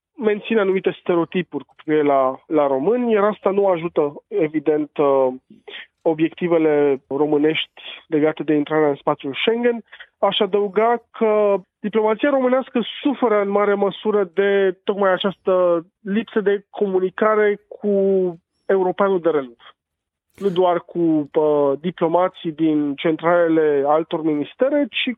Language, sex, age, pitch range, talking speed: Romanian, male, 20-39, 155-205 Hz, 115 wpm